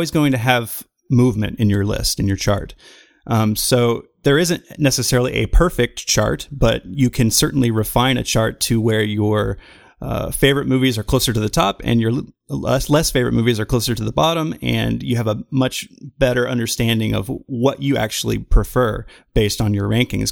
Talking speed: 190 wpm